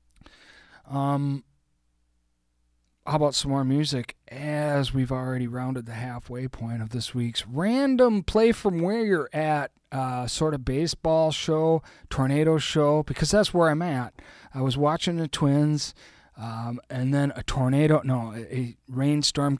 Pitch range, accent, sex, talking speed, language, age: 115-150 Hz, American, male, 145 wpm, English, 40-59